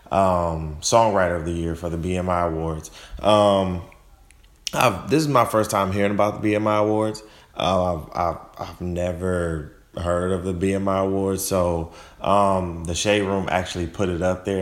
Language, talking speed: English, 160 wpm